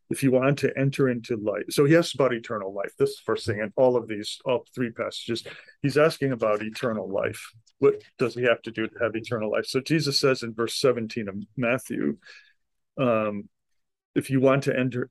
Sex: male